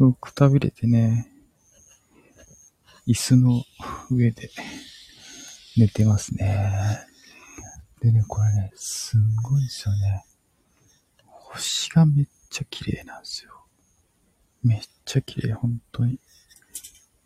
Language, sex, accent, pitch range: Japanese, male, Korean, 105-135 Hz